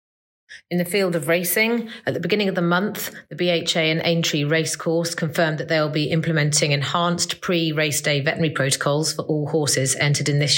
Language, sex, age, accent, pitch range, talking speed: English, female, 30-49, British, 140-170 Hz, 185 wpm